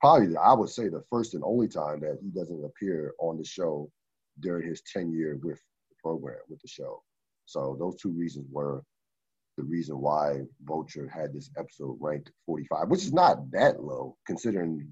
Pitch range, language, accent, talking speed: 75-100 Hz, English, American, 185 wpm